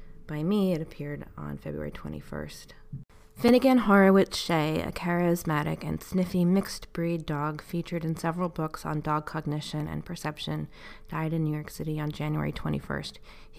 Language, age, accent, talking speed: English, 20-39, American, 150 wpm